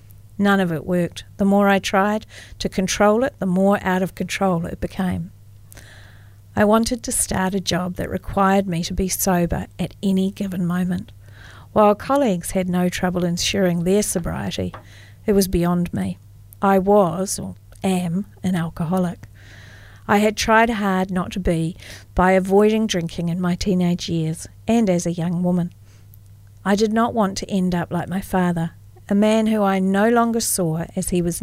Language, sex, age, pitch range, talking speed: English, female, 50-69, 165-195 Hz, 175 wpm